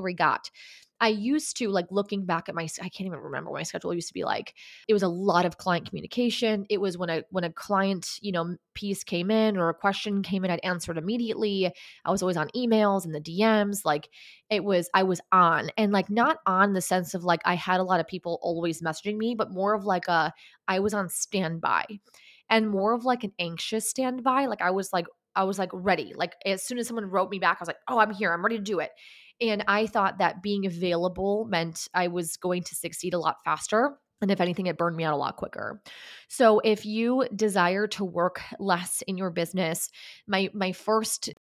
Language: English